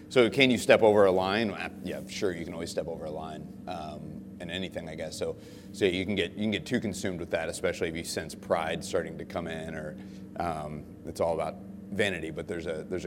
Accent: American